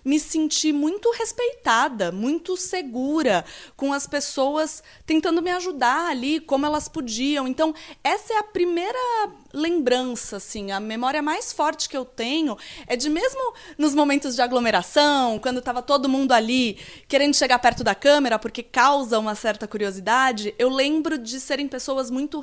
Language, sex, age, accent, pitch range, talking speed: Portuguese, female, 20-39, Brazilian, 245-320 Hz, 150 wpm